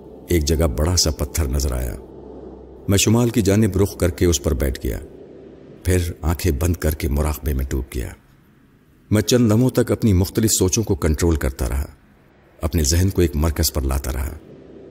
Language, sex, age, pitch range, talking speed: Urdu, male, 50-69, 80-105 Hz, 185 wpm